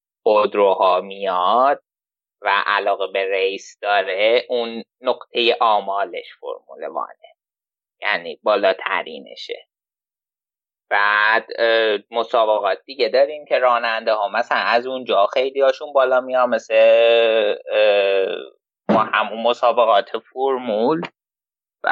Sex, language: male, Persian